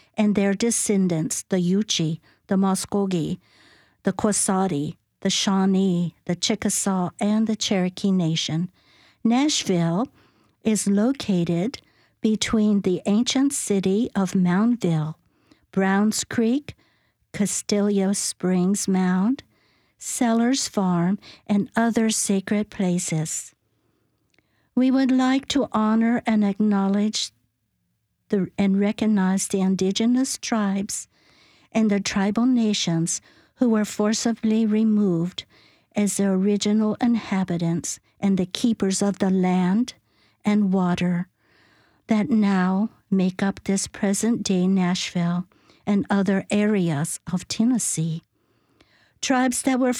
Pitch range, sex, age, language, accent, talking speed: 185-220 Hz, female, 60-79, English, American, 105 wpm